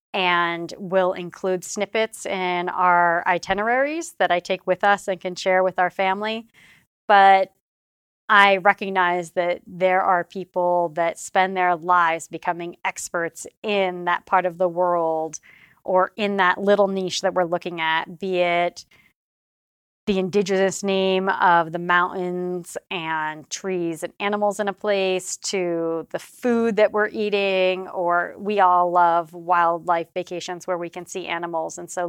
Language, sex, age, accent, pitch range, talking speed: English, female, 30-49, American, 175-200 Hz, 150 wpm